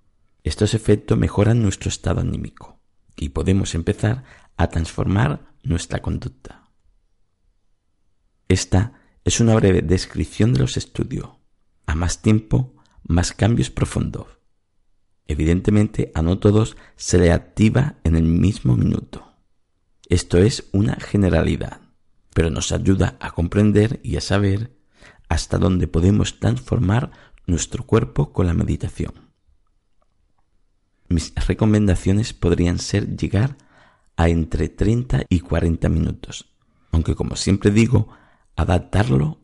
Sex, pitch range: male, 80-110 Hz